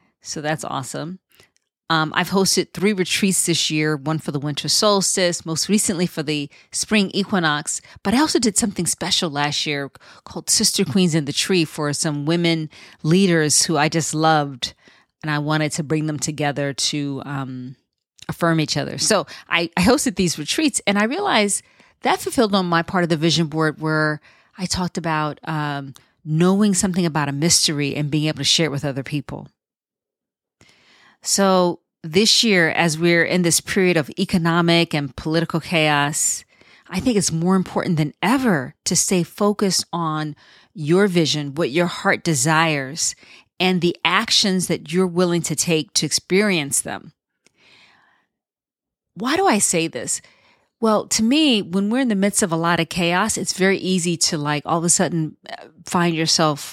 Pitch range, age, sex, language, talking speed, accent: 155-190 Hz, 30-49, female, English, 170 wpm, American